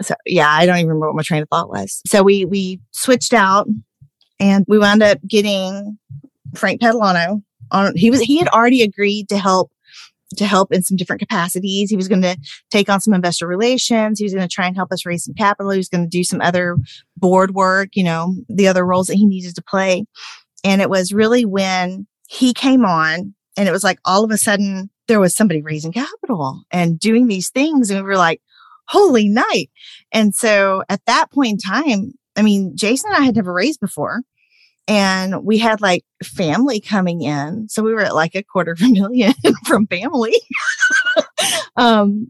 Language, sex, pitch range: English, female, 185-230 Hz